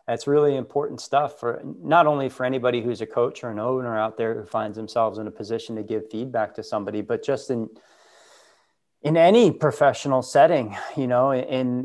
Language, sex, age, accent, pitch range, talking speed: English, male, 30-49, American, 105-120 Hz, 195 wpm